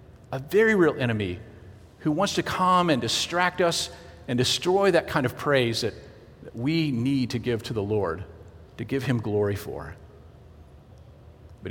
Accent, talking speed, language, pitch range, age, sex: American, 165 wpm, English, 105-150 Hz, 50-69, male